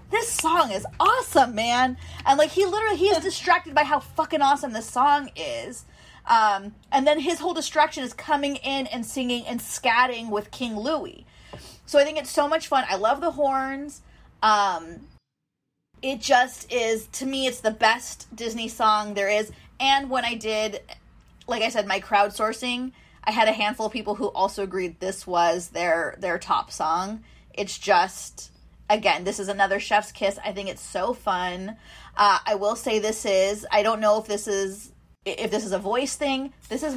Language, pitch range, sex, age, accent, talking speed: English, 205-275 Hz, female, 30-49, American, 190 wpm